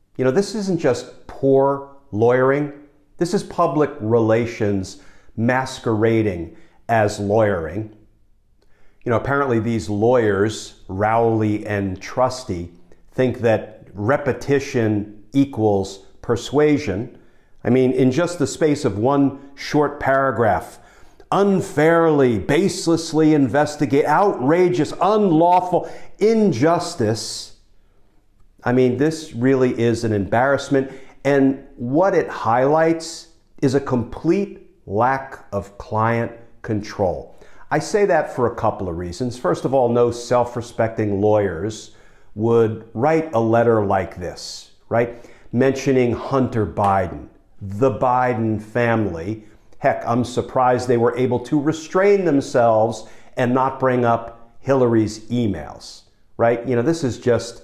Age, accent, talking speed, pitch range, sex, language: 50-69, American, 115 wpm, 110-140 Hz, male, English